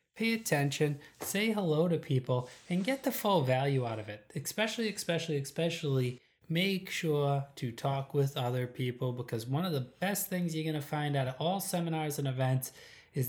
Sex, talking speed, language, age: male, 185 wpm, English, 20-39